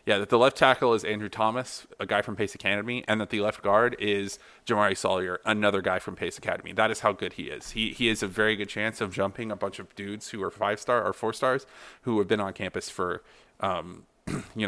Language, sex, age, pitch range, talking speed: English, male, 30-49, 95-110 Hz, 235 wpm